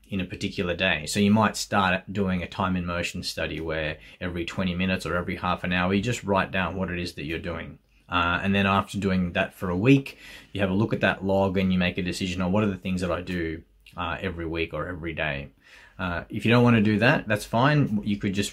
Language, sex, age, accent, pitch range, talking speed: English, male, 20-39, Australian, 90-105 Hz, 260 wpm